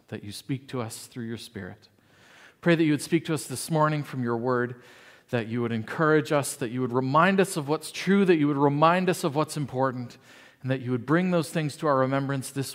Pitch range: 130-215 Hz